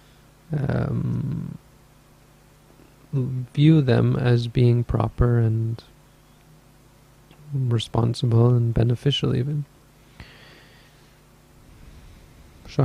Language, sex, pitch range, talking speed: English, male, 120-145 Hz, 55 wpm